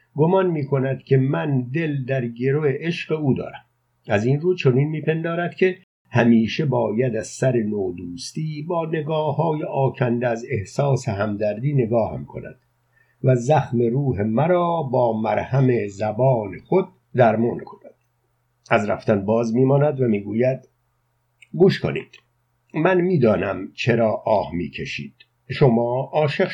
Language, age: Persian, 60-79